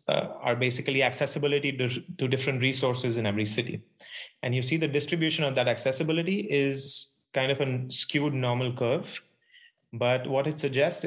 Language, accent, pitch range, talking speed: English, Indian, 115-140 Hz, 155 wpm